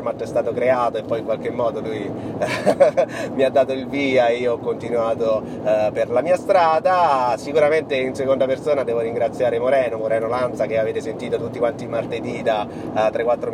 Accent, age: native, 30-49